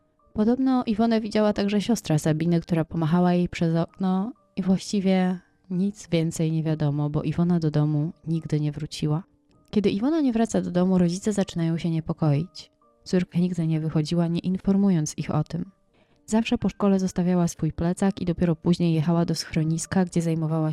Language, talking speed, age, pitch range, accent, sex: Polish, 165 wpm, 20-39, 160-195 Hz, native, female